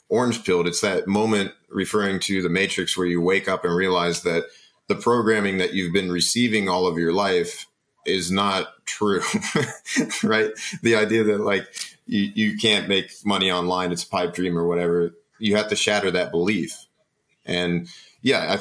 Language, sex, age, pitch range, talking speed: English, male, 30-49, 90-110 Hz, 175 wpm